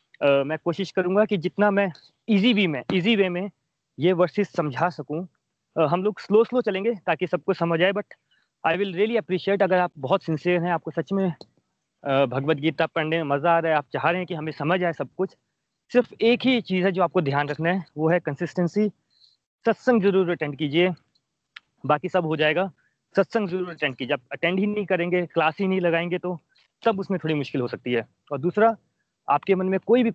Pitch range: 150-185 Hz